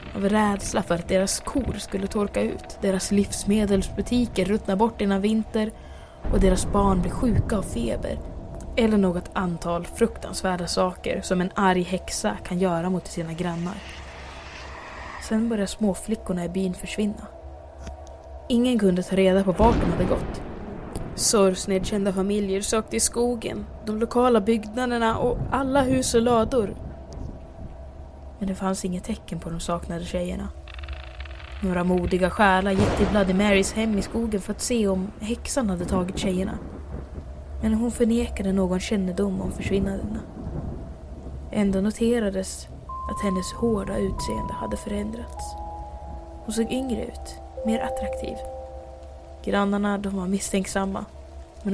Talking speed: 140 wpm